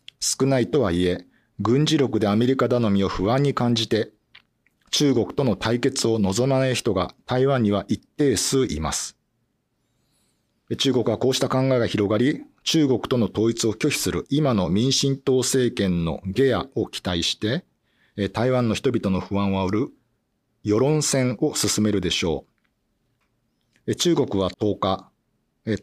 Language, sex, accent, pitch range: Japanese, male, native, 100-135 Hz